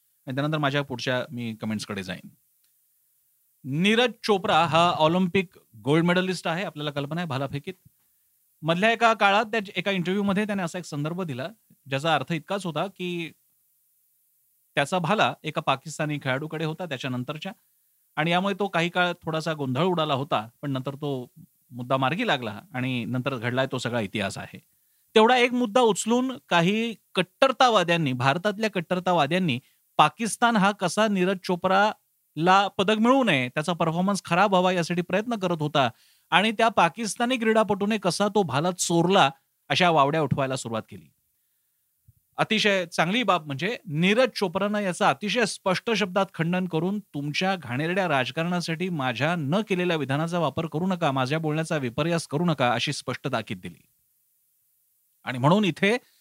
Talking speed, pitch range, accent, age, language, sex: 110 wpm, 140-200 Hz, native, 40-59, Marathi, male